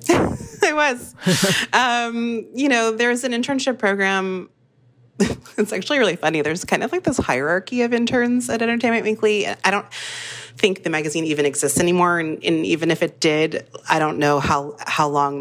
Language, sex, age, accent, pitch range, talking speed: English, female, 30-49, American, 140-195 Hz, 170 wpm